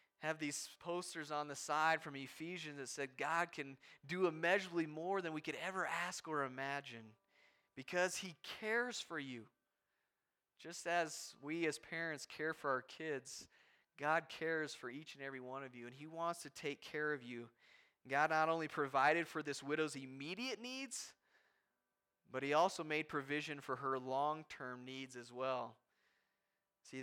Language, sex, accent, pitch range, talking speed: English, male, American, 145-190 Hz, 165 wpm